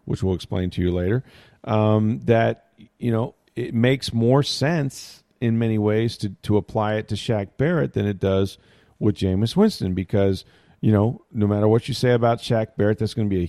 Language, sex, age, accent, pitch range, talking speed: English, male, 40-59, American, 95-115 Hz, 205 wpm